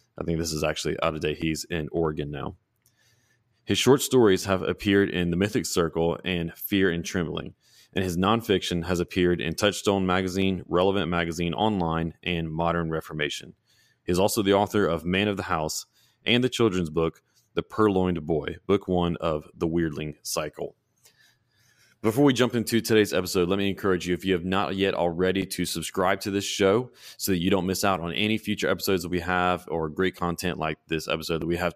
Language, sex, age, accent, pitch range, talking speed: English, male, 20-39, American, 85-100 Hz, 195 wpm